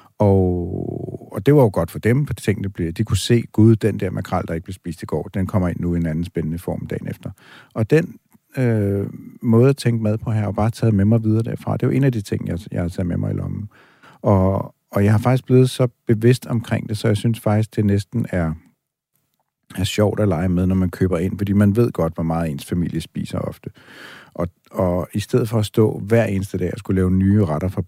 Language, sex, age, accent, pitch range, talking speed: Danish, male, 50-69, native, 90-115 Hz, 260 wpm